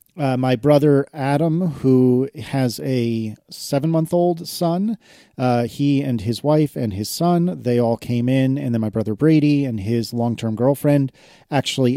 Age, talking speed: 30-49, 155 wpm